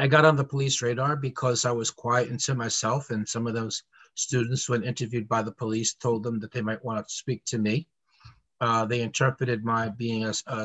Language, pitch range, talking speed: English, 110-135 Hz, 215 wpm